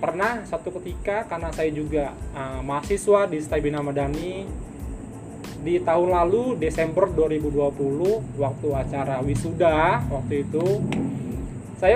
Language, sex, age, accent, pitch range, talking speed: Indonesian, male, 20-39, native, 150-200 Hz, 110 wpm